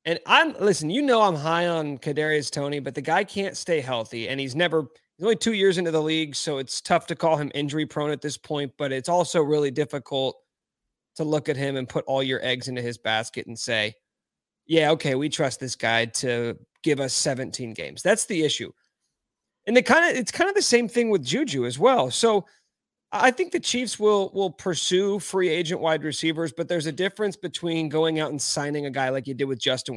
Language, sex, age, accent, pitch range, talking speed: English, male, 30-49, American, 135-175 Hz, 225 wpm